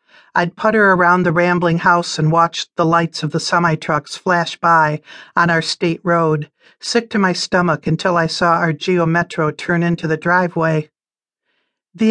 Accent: American